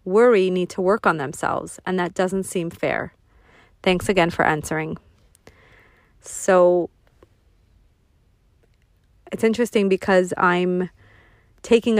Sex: female